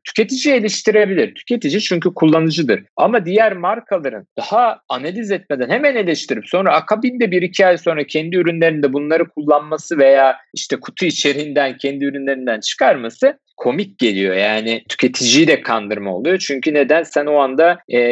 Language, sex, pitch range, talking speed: Turkish, male, 125-175 Hz, 140 wpm